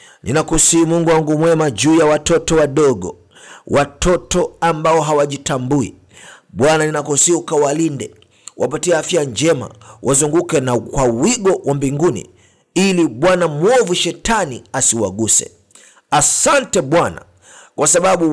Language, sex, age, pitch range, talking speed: Swahili, male, 50-69, 135-175 Hz, 105 wpm